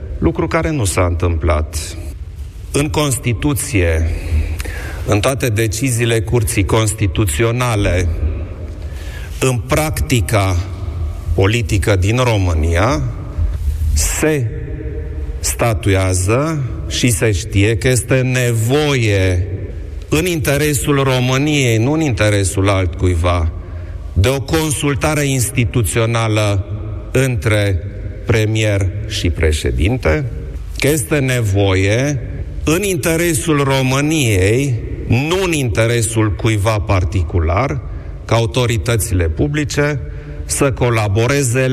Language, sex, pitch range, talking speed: Romanian, male, 90-130 Hz, 80 wpm